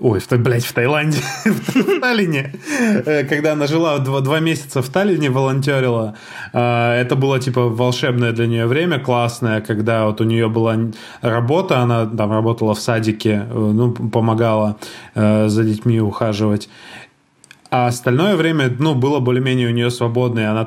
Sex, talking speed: male, 145 wpm